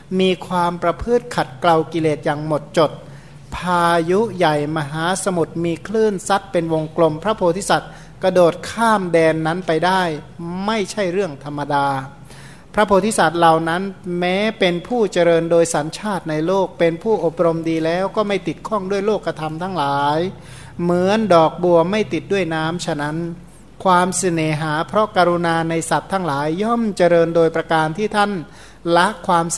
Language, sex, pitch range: Thai, male, 155-190 Hz